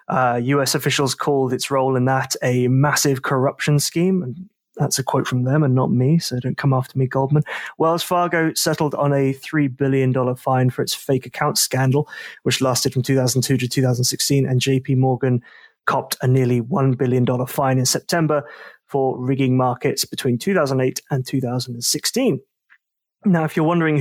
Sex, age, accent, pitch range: male, 20-39, British, 130-150 Hz